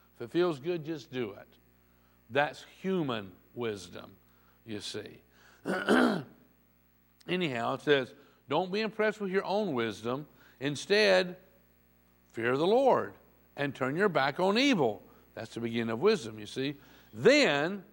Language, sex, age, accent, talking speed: English, male, 60-79, American, 135 wpm